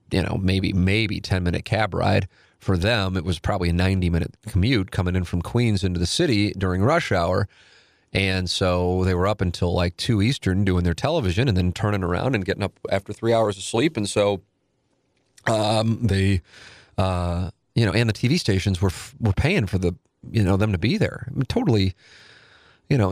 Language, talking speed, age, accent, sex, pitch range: English, 195 wpm, 30-49, American, male, 95-110 Hz